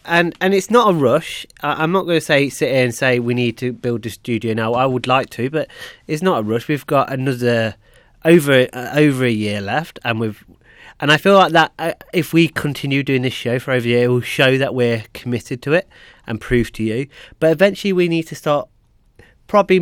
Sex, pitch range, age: male, 115-155 Hz, 30-49